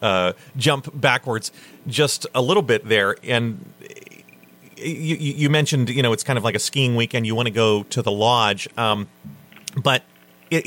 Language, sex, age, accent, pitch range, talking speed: English, male, 40-59, American, 100-125 Hz, 175 wpm